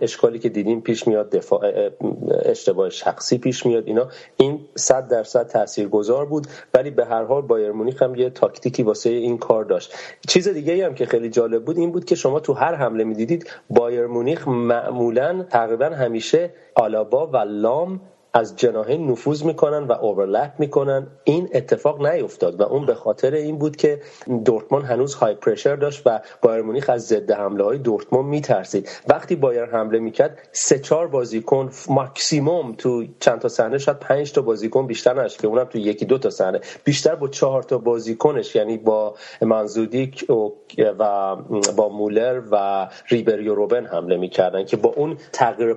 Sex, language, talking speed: male, Persian, 170 wpm